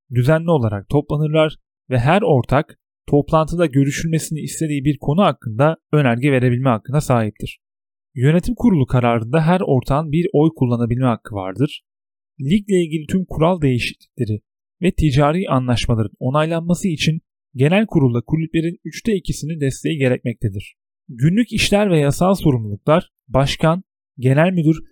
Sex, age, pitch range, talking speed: male, 30-49, 125-165 Hz, 125 wpm